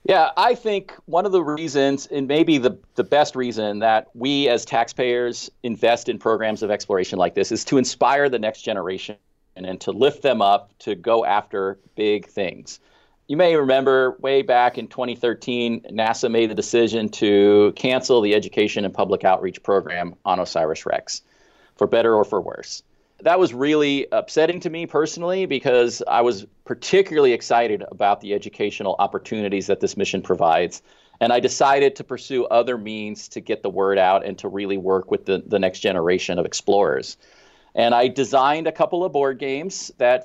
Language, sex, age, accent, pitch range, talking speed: English, male, 40-59, American, 110-145 Hz, 175 wpm